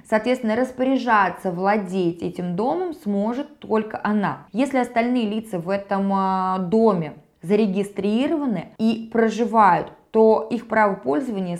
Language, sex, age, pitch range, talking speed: Russian, female, 20-39, 190-235 Hz, 110 wpm